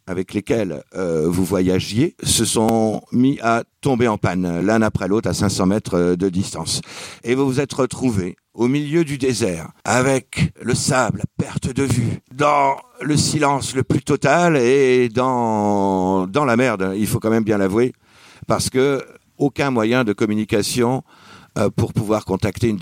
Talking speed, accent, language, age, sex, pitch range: 170 wpm, French, French, 50-69, male, 100-125 Hz